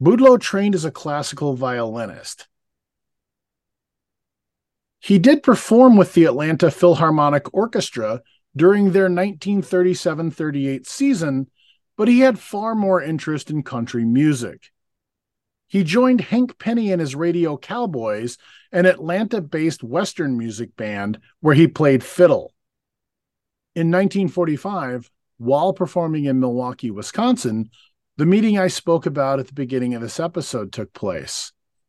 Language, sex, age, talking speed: English, male, 40-59, 120 wpm